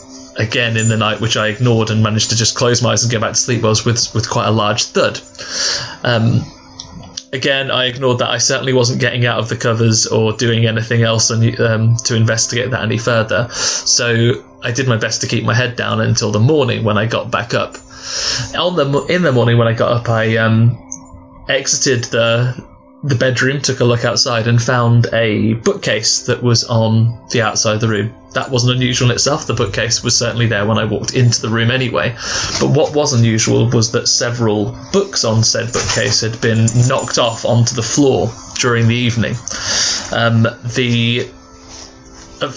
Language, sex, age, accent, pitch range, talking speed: English, male, 20-39, British, 110-125 Hz, 195 wpm